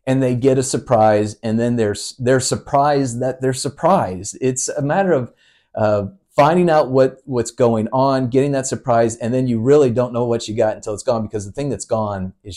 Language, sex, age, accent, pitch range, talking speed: English, male, 40-59, American, 105-130 Hz, 215 wpm